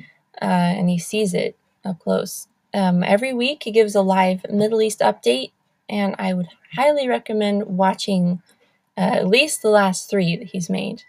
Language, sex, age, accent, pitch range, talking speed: English, female, 20-39, American, 185-215 Hz, 175 wpm